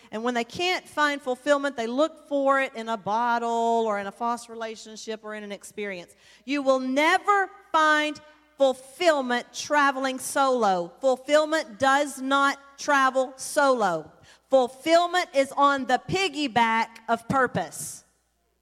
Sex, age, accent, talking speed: female, 40-59, American, 130 wpm